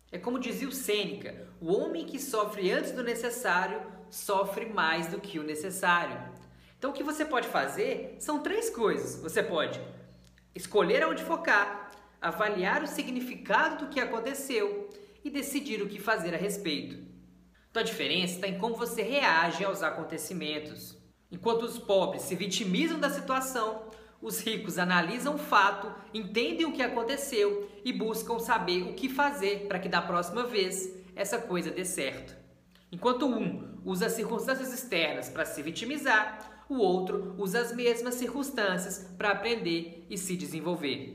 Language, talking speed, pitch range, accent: Portuguese, 155 wpm, 180-240 Hz, Brazilian